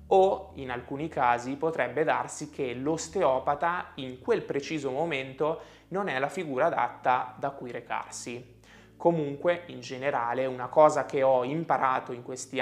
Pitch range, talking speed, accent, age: 125-160 Hz, 145 wpm, native, 20-39